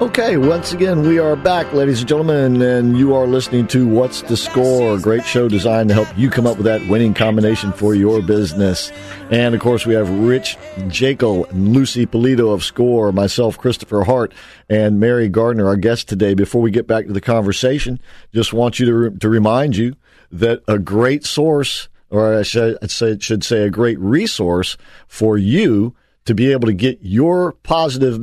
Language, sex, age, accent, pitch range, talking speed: English, male, 50-69, American, 110-125 Hz, 195 wpm